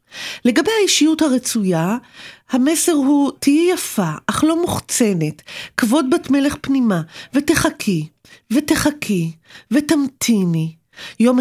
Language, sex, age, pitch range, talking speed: Hebrew, female, 40-59, 195-250 Hz, 95 wpm